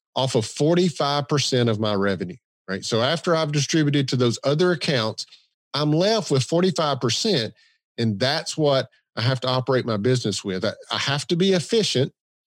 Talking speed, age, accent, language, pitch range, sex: 165 wpm, 40-59, American, English, 115-155 Hz, male